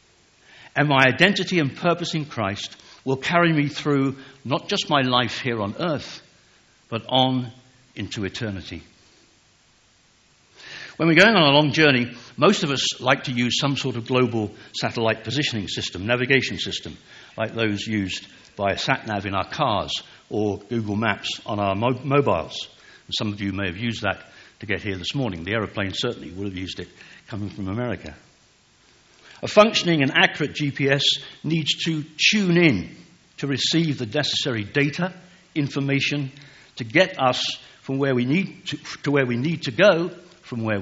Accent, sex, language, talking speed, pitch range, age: British, male, English, 165 wpm, 105-150 Hz, 60-79